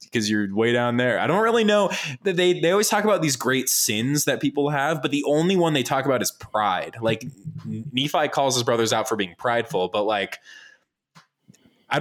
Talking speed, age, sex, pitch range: 210 wpm, 20-39, male, 95-140 Hz